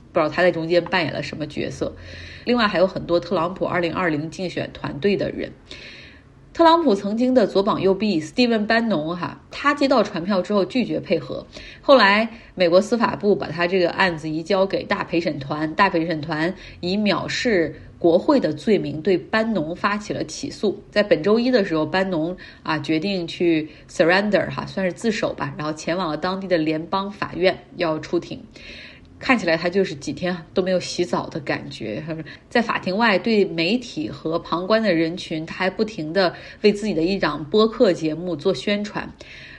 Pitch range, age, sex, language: 165-210 Hz, 30-49, female, Chinese